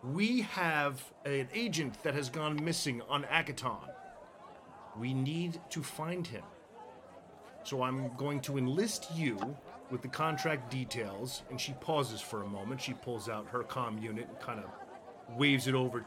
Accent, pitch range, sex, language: American, 115-150 Hz, male, English